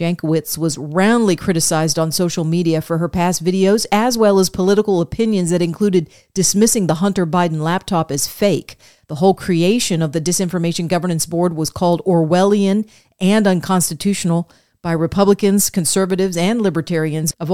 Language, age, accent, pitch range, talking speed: English, 40-59, American, 165-200 Hz, 150 wpm